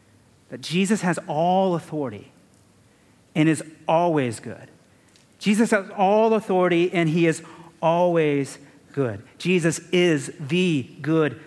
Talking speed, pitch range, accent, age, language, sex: 115 wpm, 135-185 Hz, American, 40-59, English, male